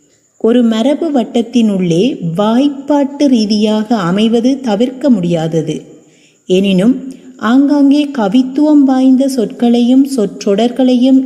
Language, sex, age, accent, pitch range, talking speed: Tamil, female, 30-49, native, 200-265 Hz, 75 wpm